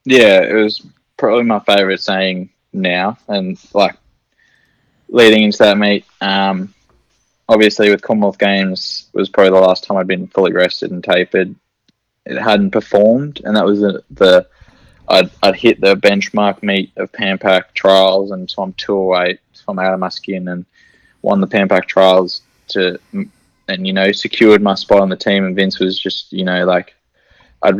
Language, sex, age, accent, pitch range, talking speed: English, male, 20-39, Australian, 95-100 Hz, 175 wpm